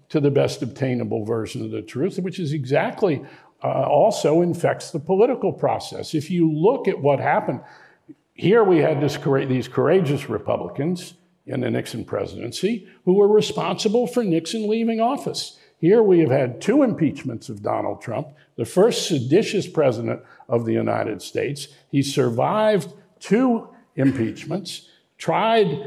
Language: English